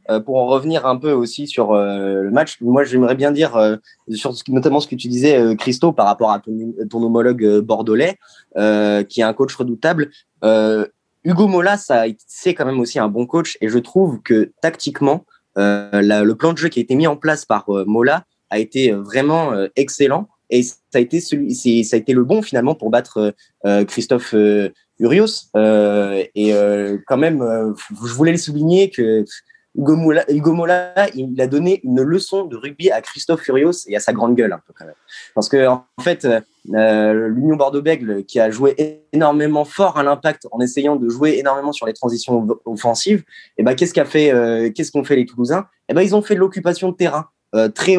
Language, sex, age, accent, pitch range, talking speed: French, male, 20-39, French, 110-160 Hz, 220 wpm